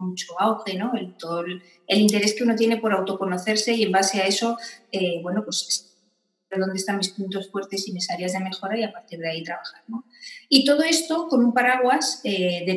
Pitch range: 180-230 Hz